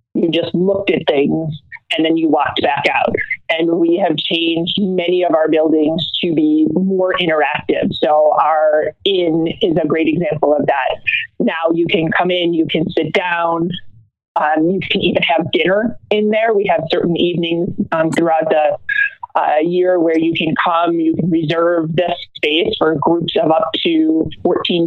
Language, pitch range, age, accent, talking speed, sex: English, 160-195 Hz, 30-49, American, 175 wpm, male